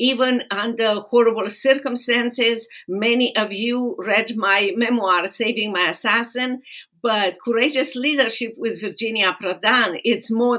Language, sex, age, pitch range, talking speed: English, female, 50-69, 200-255 Hz, 120 wpm